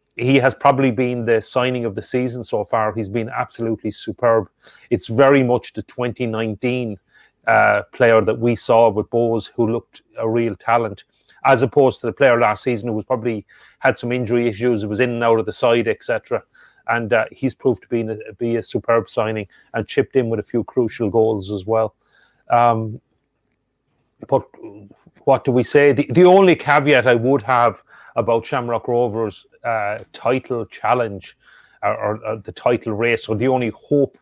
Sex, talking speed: male, 185 wpm